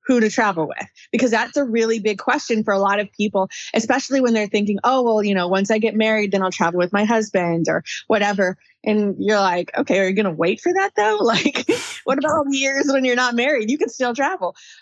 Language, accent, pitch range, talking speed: English, American, 190-250 Hz, 240 wpm